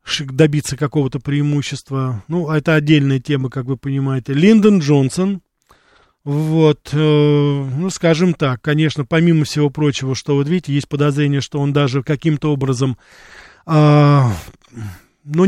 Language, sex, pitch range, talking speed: Russian, male, 135-160 Hz, 130 wpm